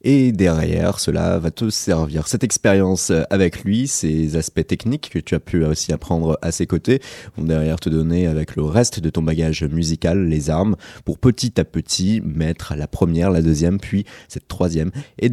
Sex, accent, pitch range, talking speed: male, French, 80-105 Hz, 190 wpm